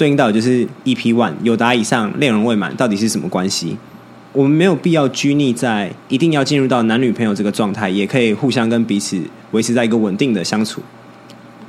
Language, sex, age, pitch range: Chinese, male, 20-39, 105-130 Hz